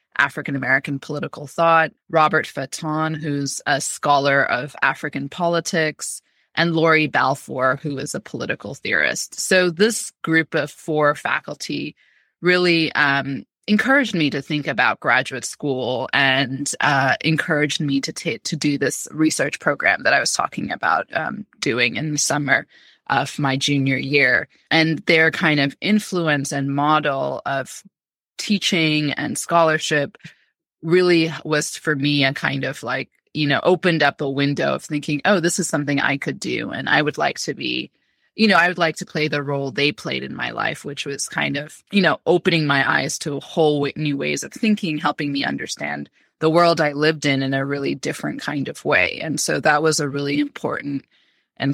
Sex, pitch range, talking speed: female, 140-165 Hz, 175 wpm